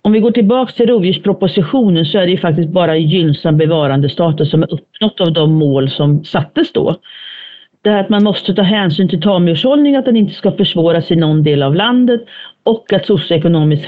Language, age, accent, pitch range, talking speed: Swedish, 40-59, native, 160-210 Hz, 200 wpm